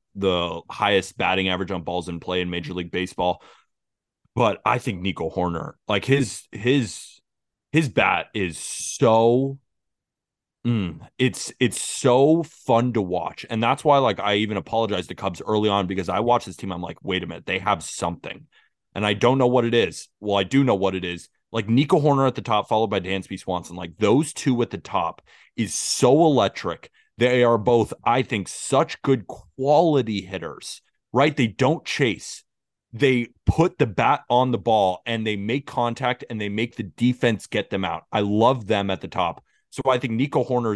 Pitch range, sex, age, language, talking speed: 95-125 Hz, male, 20-39, English, 195 wpm